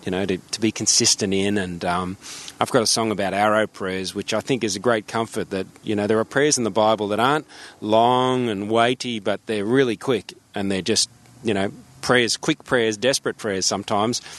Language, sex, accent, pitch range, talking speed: English, male, Australian, 105-160 Hz, 215 wpm